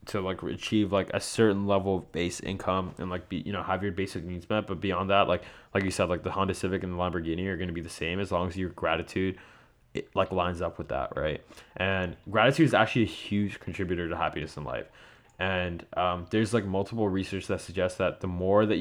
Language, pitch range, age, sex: English, 90-105 Hz, 20-39, male